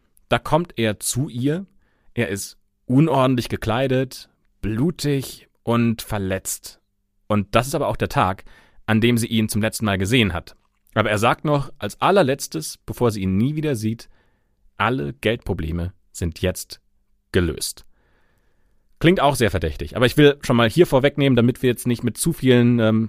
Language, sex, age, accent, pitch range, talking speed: German, male, 30-49, German, 100-125 Hz, 165 wpm